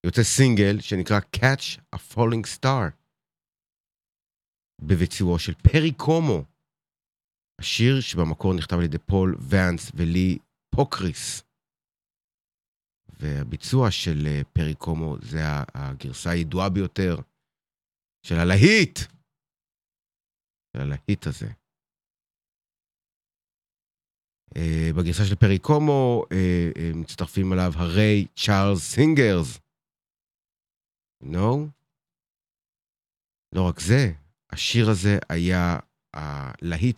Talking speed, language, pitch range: 80 wpm, Hebrew, 80-110 Hz